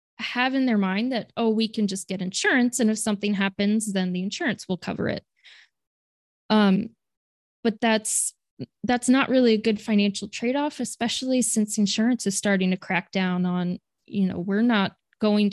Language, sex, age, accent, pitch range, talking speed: English, female, 20-39, American, 185-215 Hz, 175 wpm